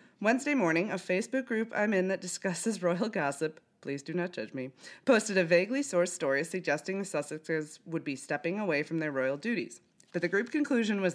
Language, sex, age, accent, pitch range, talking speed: English, female, 20-39, American, 150-200 Hz, 190 wpm